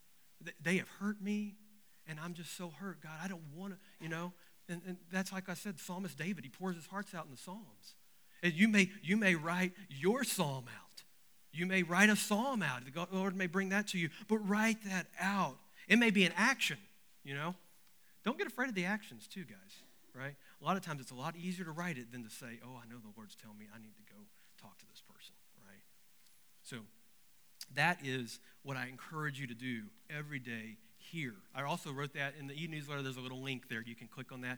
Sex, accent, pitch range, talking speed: male, American, 125-190 Hz, 235 wpm